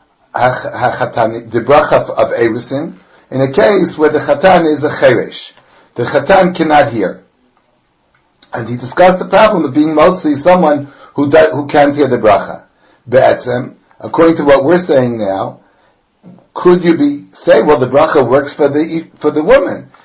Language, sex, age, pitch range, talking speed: English, male, 60-79, 125-160 Hz, 160 wpm